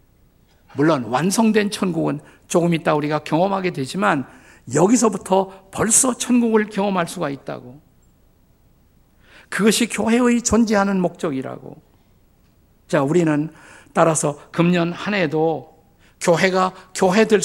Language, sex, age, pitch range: Korean, male, 50-69, 150-215 Hz